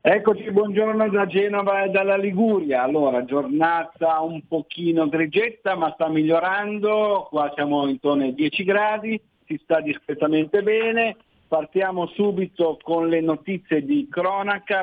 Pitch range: 135-185 Hz